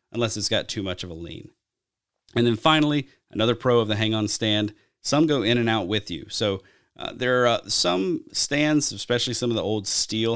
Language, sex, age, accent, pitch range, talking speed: English, male, 30-49, American, 100-120 Hz, 215 wpm